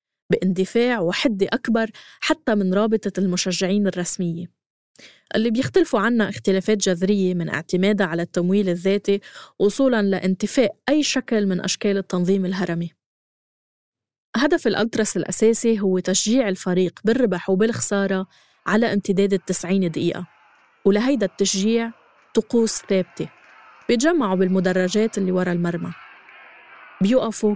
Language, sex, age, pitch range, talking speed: Arabic, female, 20-39, 185-220 Hz, 105 wpm